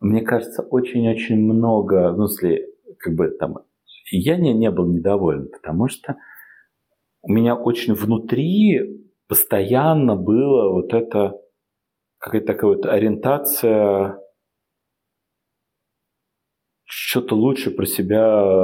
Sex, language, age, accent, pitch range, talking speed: male, Russian, 40-59, native, 105-140 Hz, 105 wpm